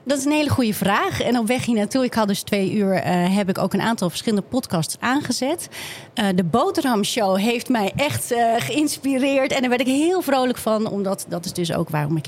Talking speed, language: 230 wpm, Dutch